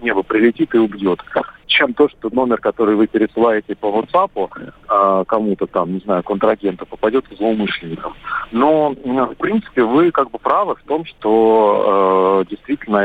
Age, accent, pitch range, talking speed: 40-59, native, 110-150 Hz, 145 wpm